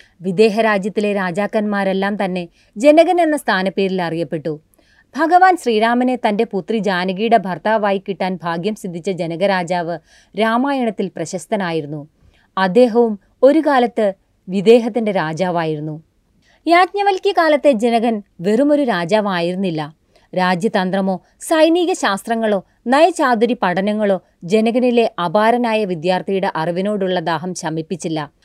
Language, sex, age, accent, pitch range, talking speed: Malayalam, female, 30-49, native, 185-255 Hz, 85 wpm